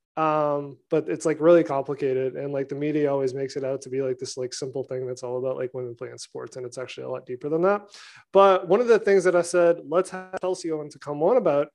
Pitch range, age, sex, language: 135-160 Hz, 20-39, male, English